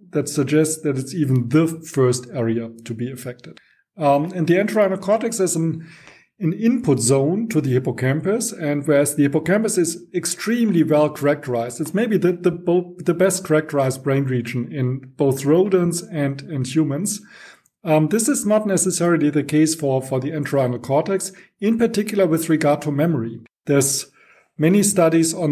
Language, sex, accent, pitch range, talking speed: English, male, German, 135-175 Hz, 160 wpm